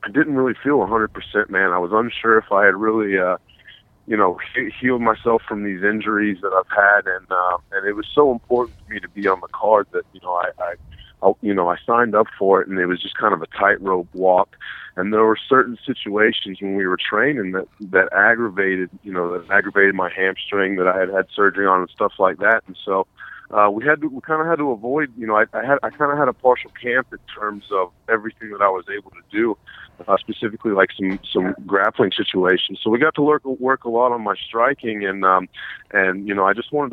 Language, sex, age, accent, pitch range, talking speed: English, male, 30-49, American, 95-115 Hz, 245 wpm